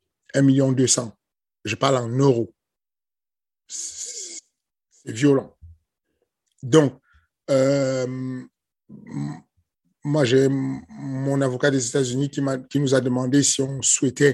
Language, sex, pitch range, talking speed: French, male, 125-140 Hz, 110 wpm